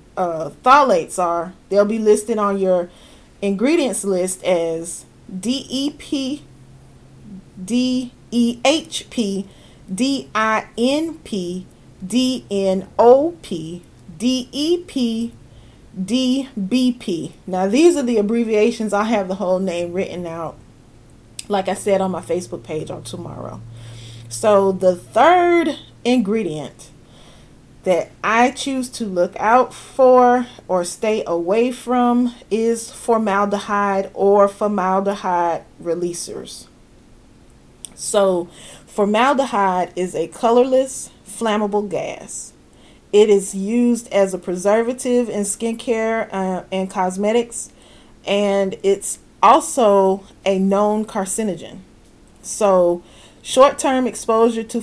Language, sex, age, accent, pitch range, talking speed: English, female, 30-49, American, 185-240 Hz, 95 wpm